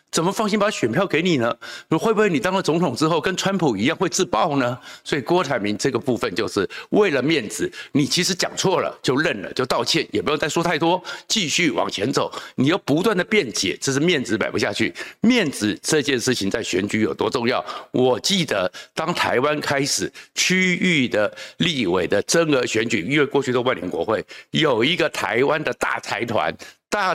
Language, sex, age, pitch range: Chinese, male, 60-79, 130-185 Hz